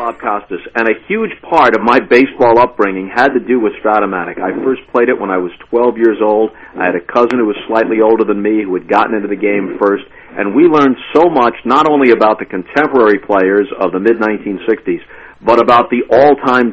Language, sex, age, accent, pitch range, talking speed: English, male, 50-69, American, 95-130 Hz, 215 wpm